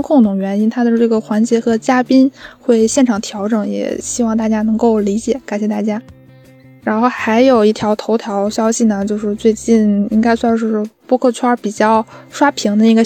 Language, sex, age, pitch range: Chinese, female, 10-29, 210-245 Hz